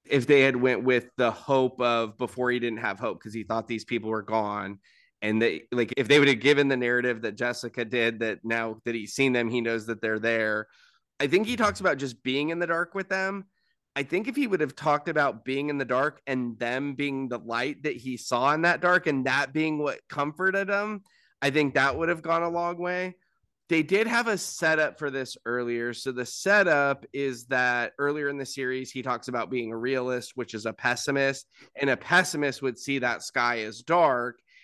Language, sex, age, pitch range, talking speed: English, male, 20-39, 115-145 Hz, 225 wpm